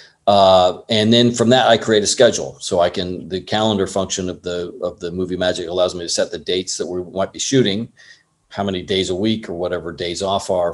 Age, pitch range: 40-59, 95-115 Hz